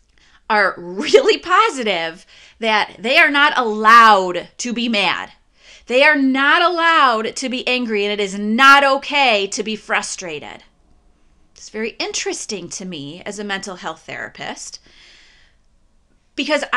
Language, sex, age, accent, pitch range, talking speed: English, female, 30-49, American, 190-275 Hz, 130 wpm